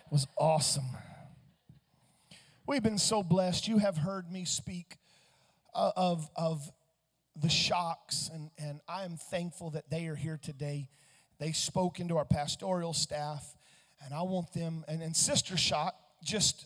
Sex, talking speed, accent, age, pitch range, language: male, 140 wpm, American, 40-59, 150-185 Hz, English